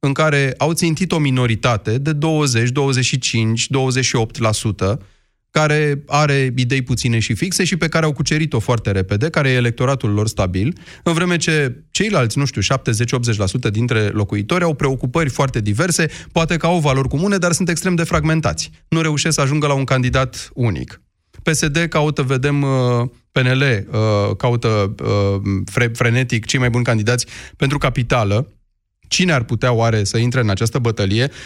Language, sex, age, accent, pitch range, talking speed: Romanian, male, 30-49, native, 115-160 Hz, 155 wpm